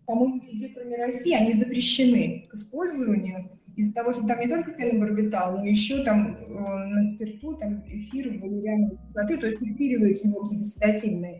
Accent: native